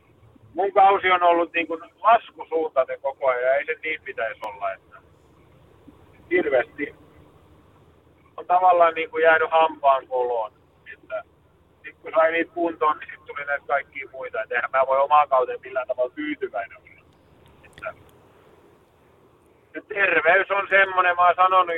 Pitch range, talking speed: 145-190 Hz, 135 wpm